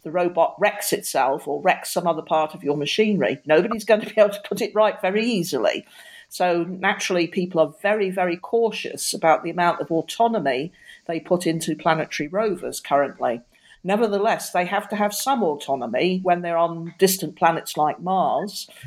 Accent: British